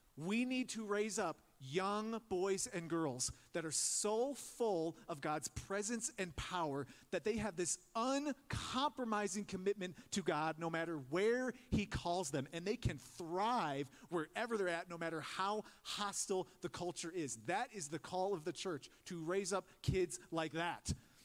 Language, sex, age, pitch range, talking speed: English, male, 40-59, 130-200 Hz, 165 wpm